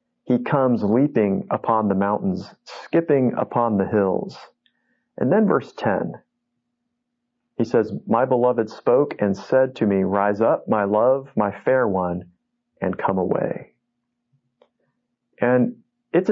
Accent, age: American, 40-59